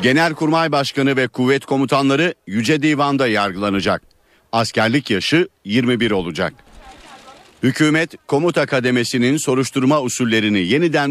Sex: male